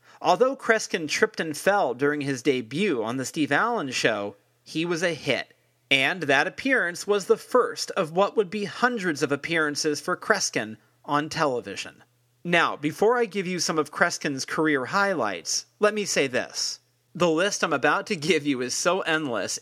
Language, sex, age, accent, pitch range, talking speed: English, male, 40-59, American, 150-205 Hz, 175 wpm